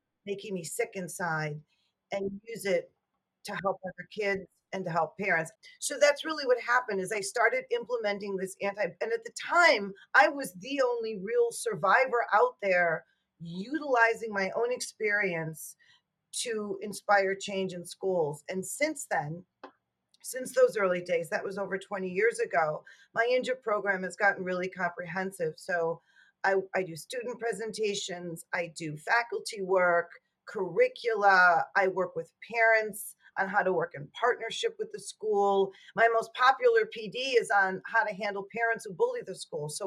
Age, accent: 40-59, American